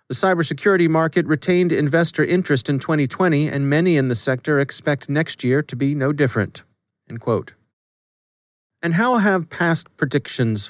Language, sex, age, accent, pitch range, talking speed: English, male, 40-59, American, 115-155 Hz, 150 wpm